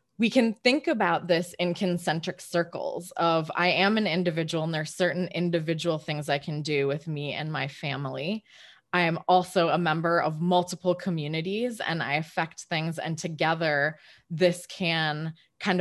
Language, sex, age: English, female, 20-39